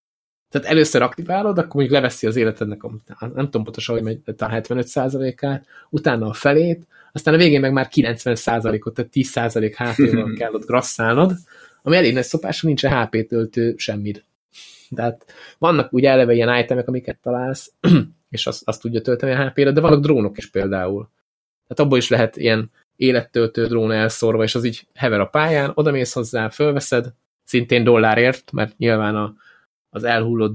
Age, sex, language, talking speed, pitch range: 20-39, male, Hungarian, 160 wpm, 110-135 Hz